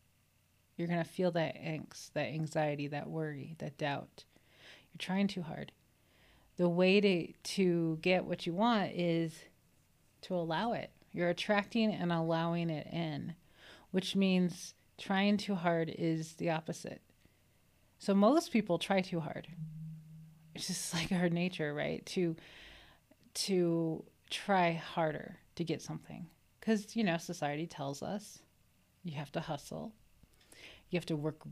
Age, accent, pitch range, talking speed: 30-49, American, 160-200 Hz, 145 wpm